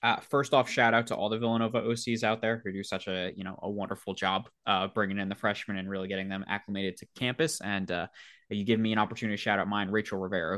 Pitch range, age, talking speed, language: 110-145 Hz, 20-39, 260 wpm, English